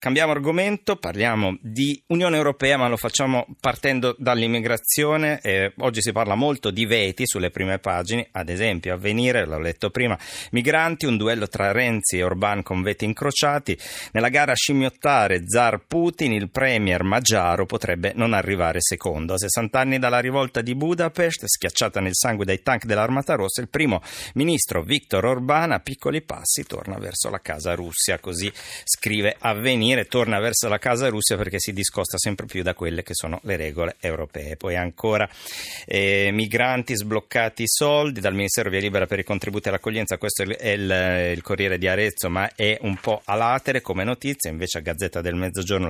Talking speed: 175 wpm